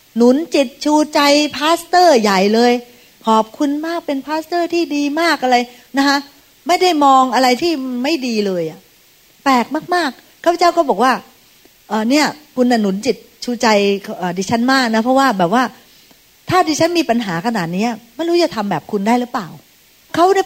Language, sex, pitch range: Thai, female, 205-290 Hz